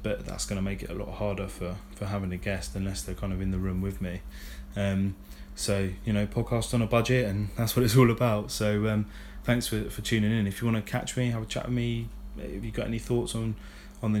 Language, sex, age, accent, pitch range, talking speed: English, male, 20-39, British, 95-110 Hz, 265 wpm